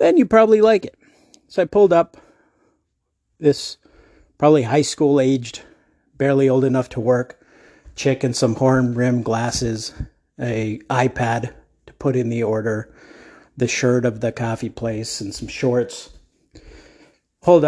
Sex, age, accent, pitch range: male, 50-69, American, 120-180 Hz